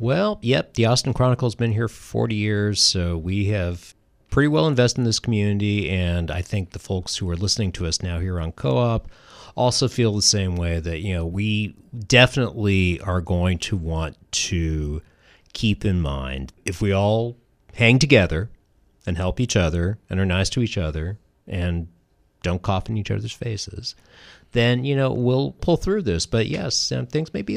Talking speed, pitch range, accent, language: 190 wpm, 90-125 Hz, American, English